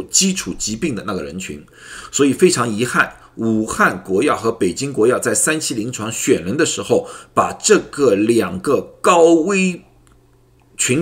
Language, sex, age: Chinese, male, 50-69